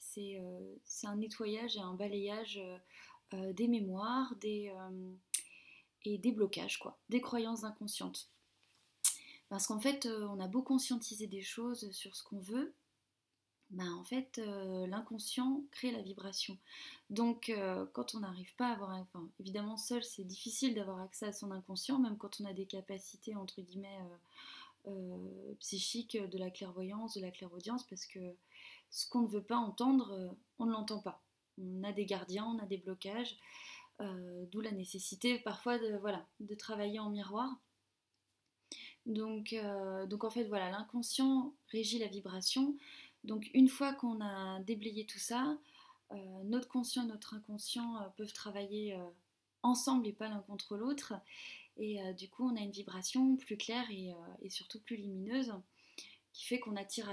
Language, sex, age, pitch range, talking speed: French, female, 20-39, 195-240 Hz, 170 wpm